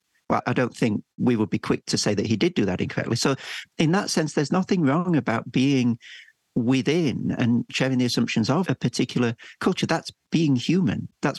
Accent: British